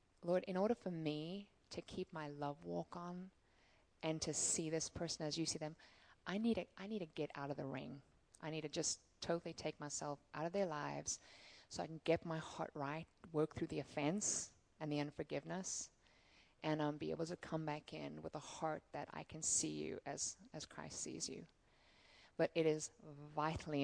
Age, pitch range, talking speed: 20-39, 150-190 Hz, 200 wpm